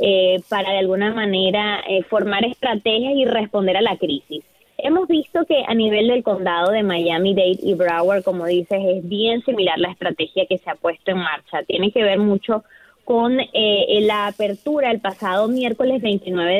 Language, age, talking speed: Spanish, 20-39, 175 wpm